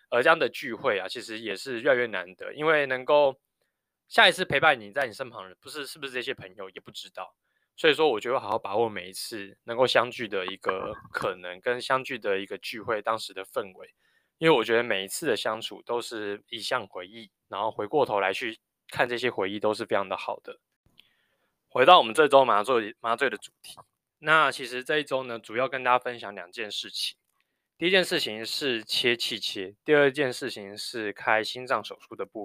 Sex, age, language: male, 20-39, Chinese